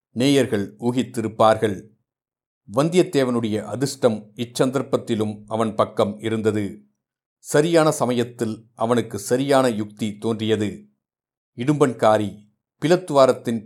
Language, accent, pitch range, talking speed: Tamil, native, 110-130 Hz, 70 wpm